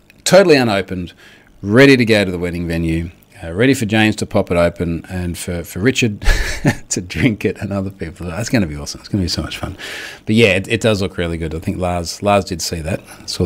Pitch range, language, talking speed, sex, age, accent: 95-130 Hz, English, 245 wpm, male, 40-59, Australian